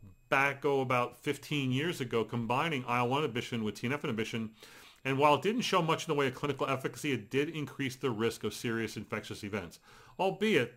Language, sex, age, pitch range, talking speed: English, male, 40-59, 120-145 Hz, 185 wpm